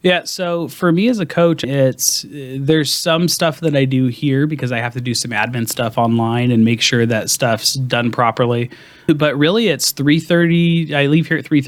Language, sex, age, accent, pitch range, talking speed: English, male, 30-49, American, 115-145 Hz, 200 wpm